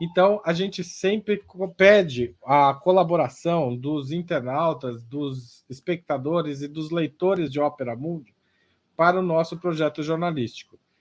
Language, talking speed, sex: Portuguese, 120 wpm, male